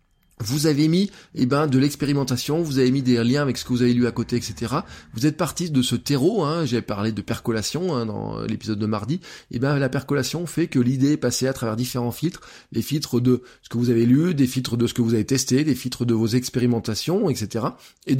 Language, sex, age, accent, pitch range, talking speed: French, male, 20-39, French, 110-140 Hz, 240 wpm